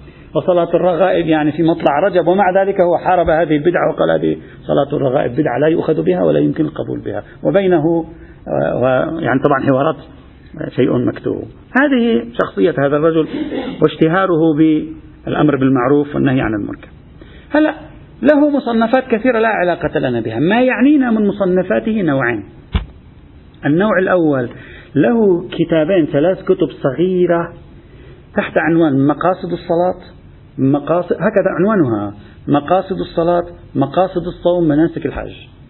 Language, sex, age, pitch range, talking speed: Arabic, male, 50-69, 150-200 Hz, 125 wpm